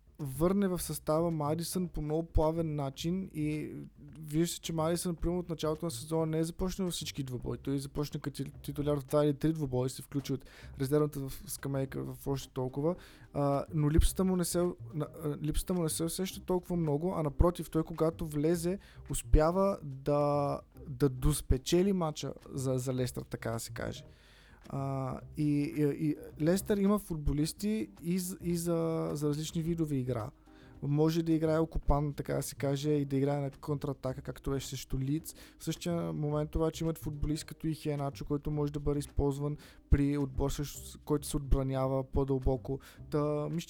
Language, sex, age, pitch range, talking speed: Bulgarian, male, 20-39, 140-160 Hz, 170 wpm